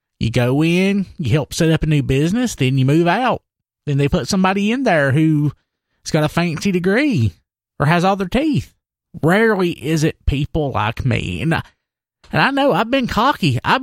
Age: 30-49